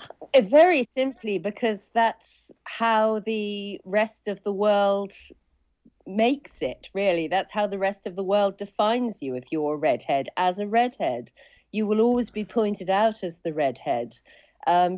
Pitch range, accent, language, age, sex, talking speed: 170-220 Hz, British, English, 40-59, female, 160 wpm